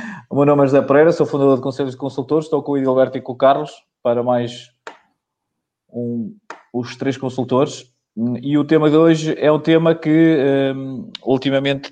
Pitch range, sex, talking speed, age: 115-145 Hz, male, 185 wpm, 20-39